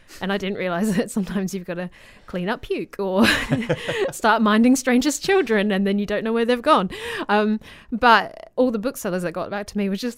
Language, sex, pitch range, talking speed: English, female, 175-210 Hz, 220 wpm